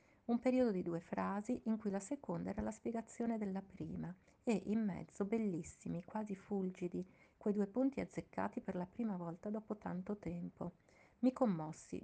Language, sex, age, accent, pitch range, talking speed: Italian, female, 40-59, native, 180-220 Hz, 165 wpm